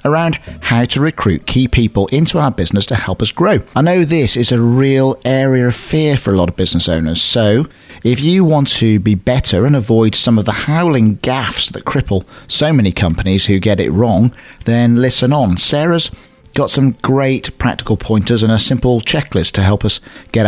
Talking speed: 200 wpm